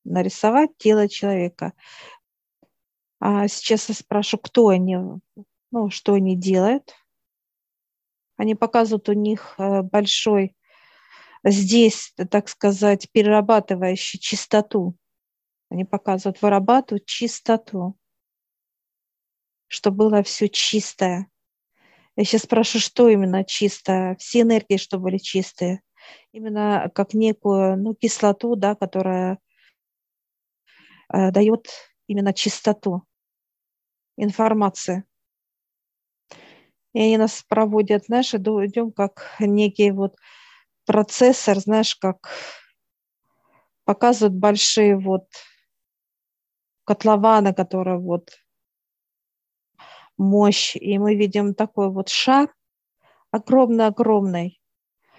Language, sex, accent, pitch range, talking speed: Russian, female, native, 195-220 Hz, 85 wpm